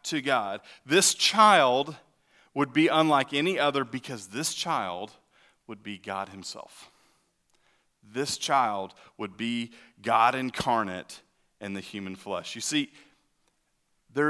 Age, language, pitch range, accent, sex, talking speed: 40-59, English, 110-150 Hz, American, male, 120 wpm